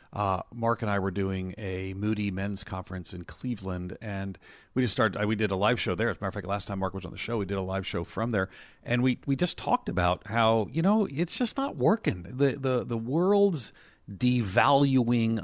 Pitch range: 95-120 Hz